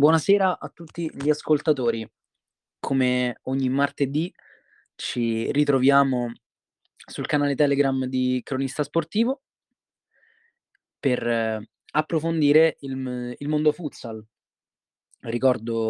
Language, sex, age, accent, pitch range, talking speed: Italian, male, 20-39, native, 120-160 Hz, 85 wpm